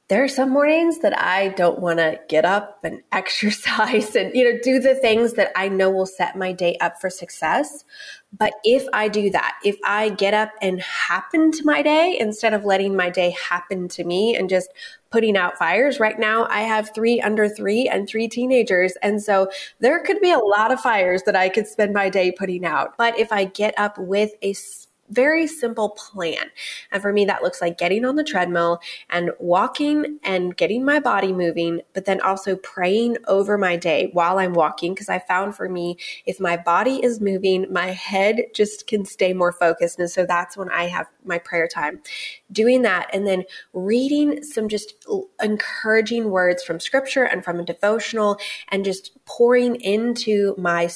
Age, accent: 20-39, American